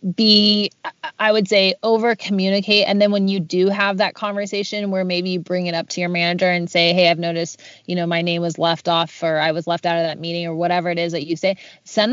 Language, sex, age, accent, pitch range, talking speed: English, female, 20-39, American, 170-205 Hz, 250 wpm